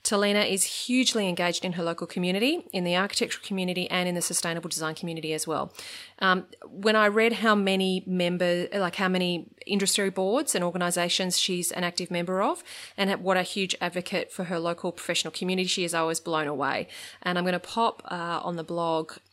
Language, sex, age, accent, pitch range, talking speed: English, female, 30-49, Australian, 170-205 Hz, 200 wpm